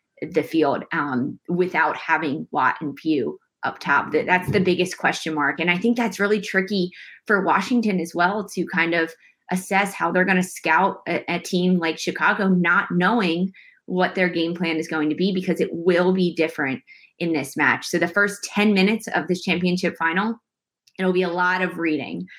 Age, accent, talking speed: 20-39, American, 190 wpm